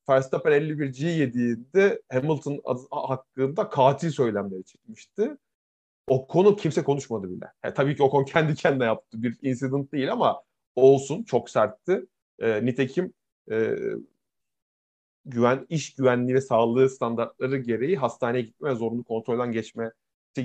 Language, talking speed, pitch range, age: Turkish, 130 wpm, 115-145 Hz, 30-49